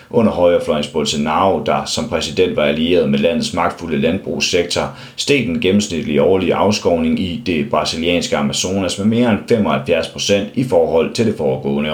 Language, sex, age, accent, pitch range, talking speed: Danish, male, 30-49, native, 80-115 Hz, 150 wpm